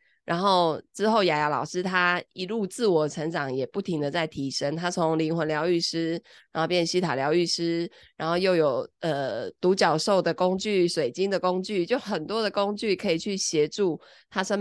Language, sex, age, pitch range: Chinese, female, 20-39, 160-195 Hz